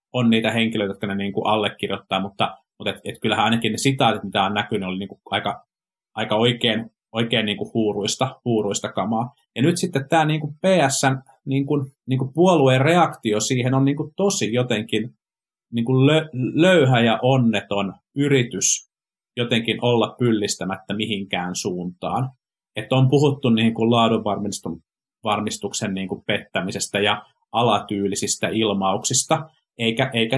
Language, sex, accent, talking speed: Finnish, male, native, 105 wpm